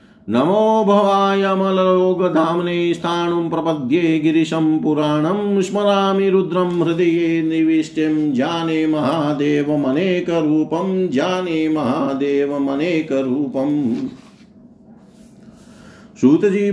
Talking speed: 50 wpm